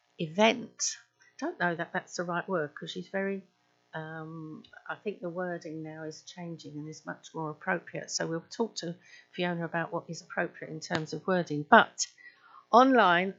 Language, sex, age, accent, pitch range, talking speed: English, female, 50-69, British, 165-200 Hz, 180 wpm